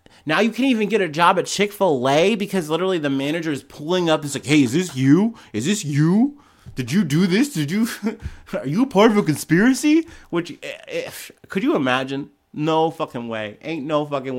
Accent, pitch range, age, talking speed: American, 120-160 Hz, 30-49, 210 wpm